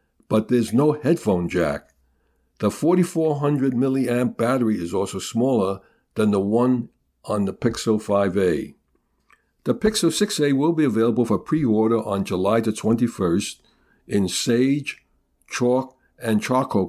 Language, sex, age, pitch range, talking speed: English, male, 60-79, 100-130 Hz, 130 wpm